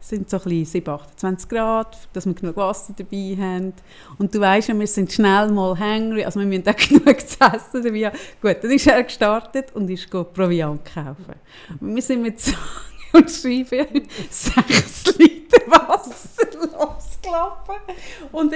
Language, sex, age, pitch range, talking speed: German, female, 30-49, 185-265 Hz, 170 wpm